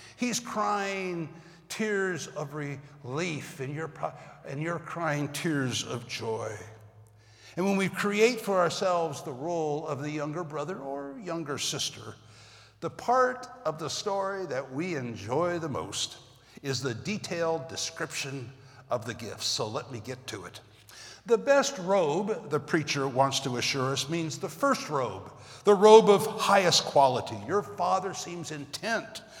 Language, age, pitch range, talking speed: English, 60-79, 135-195 Hz, 145 wpm